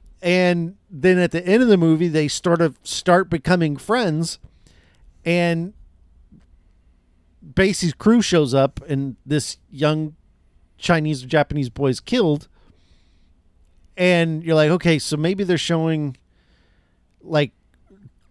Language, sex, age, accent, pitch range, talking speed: English, male, 40-59, American, 125-170 Hz, 120 wpm